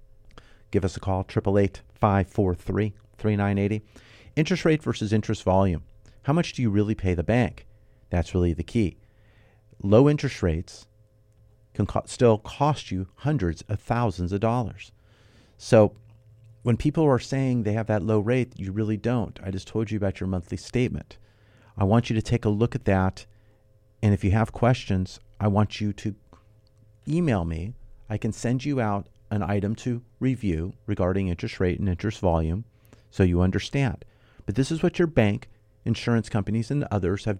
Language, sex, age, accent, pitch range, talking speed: English, male, 40-59, American, 100-115 Hz, 170 wpm